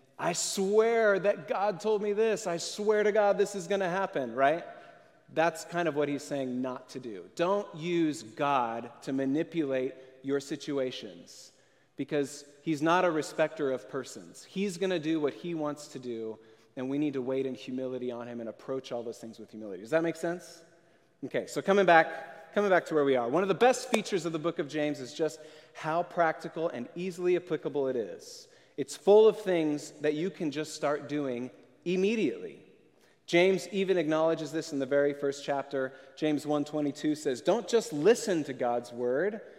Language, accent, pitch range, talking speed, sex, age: English, American, 140-180 Hz, 190 wpm, male, 30-49